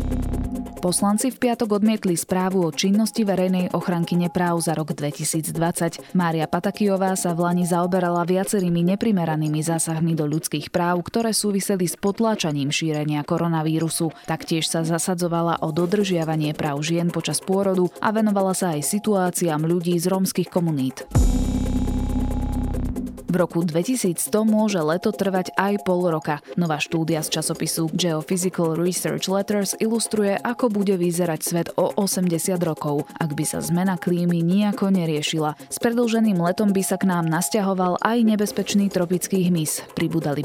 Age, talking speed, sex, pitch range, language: 20-39, 140 wpm, female, 155-195 Hz, Slovak